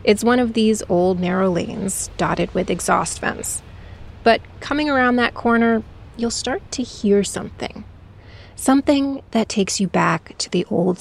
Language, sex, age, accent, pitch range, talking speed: English, female, 30-49, American, 185-230 Hz, 160 wpm